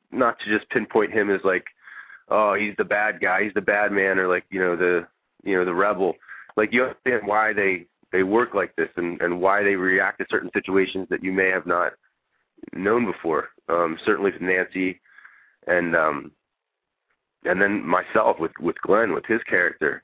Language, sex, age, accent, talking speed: English, male, 30-49, American, 190 wpm